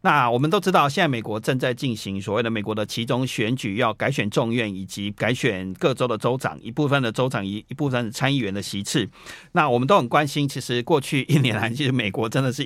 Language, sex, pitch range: Chinese, male, 110-135 Hz